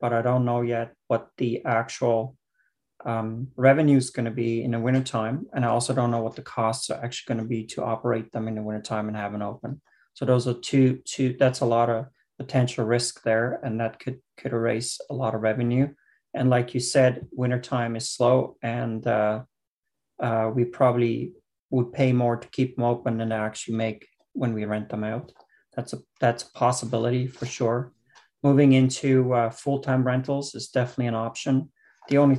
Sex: male